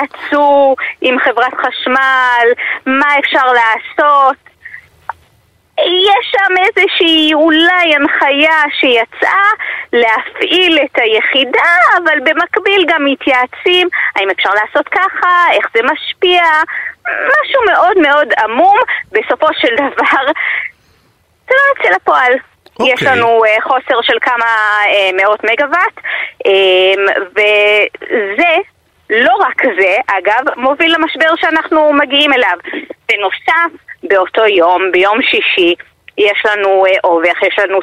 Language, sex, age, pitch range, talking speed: Hebrew, female, 20-39, 215-335 Hz, 105 wpm